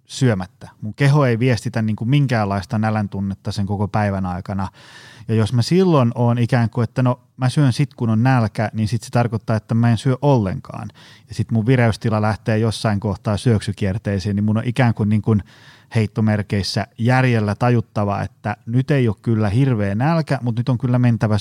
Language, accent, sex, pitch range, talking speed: Finnish, native, male, 105-125 Hz, 190 wpm